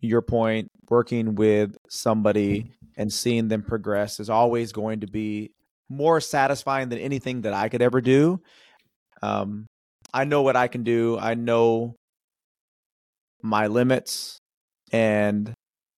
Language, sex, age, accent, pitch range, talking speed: English, male, 30-49, American, 110-130 Hz, 130 wpm